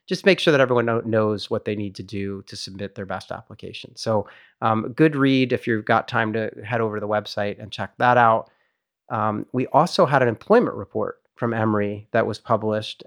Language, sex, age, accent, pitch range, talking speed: English, male, 30-49, American, 110-130 Hz, 210 wpm